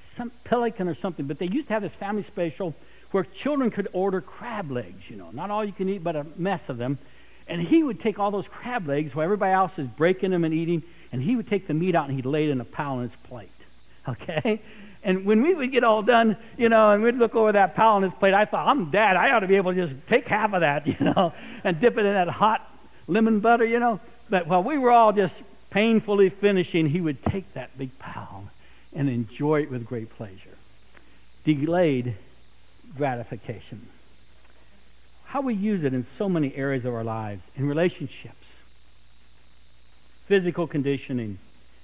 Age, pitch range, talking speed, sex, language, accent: 60-79, 120-205 Hz, 210 wpm, male, English, American